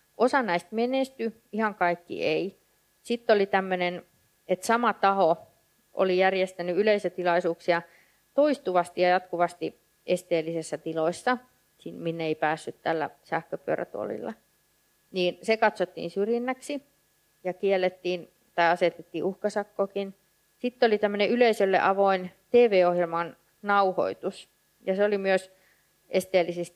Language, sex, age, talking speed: Finnish, female, 30-49, 105 wpm